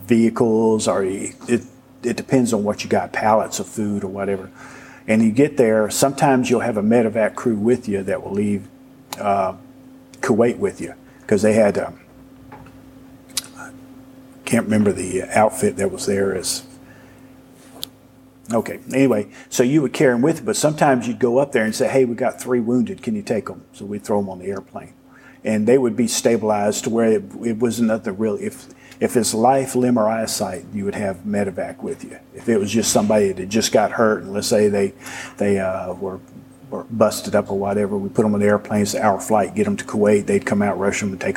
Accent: American